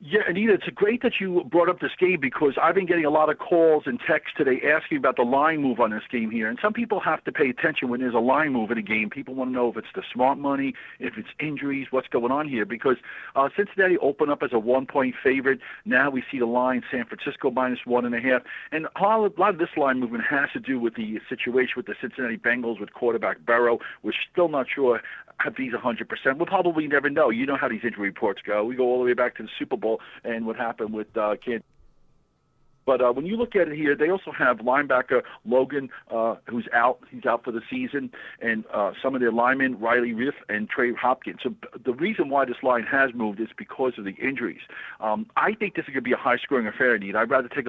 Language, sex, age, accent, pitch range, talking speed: English, male, 50-69, American, 120-150 Hz, 245 wpm